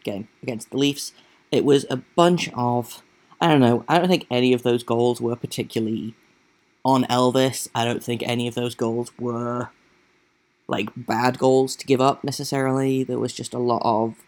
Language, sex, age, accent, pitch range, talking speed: English, male, 10-29, British, 115-130 Hz, 185 wpm